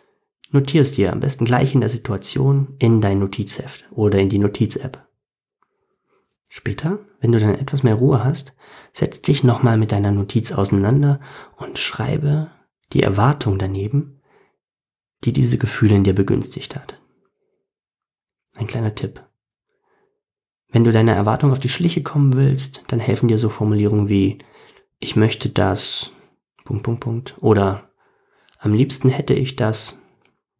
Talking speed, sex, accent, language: 135 wpm, male, German, German